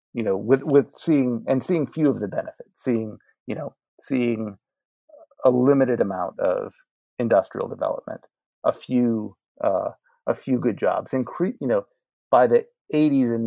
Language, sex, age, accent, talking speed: English, male, 30-49, American, 155 wpm